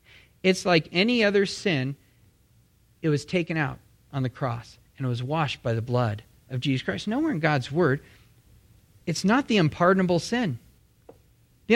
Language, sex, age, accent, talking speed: English, male, 40-59, American, 165 wpm